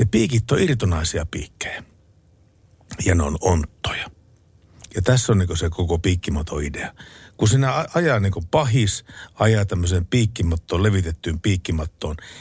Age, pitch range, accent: 60-79, 85-110 Hz, native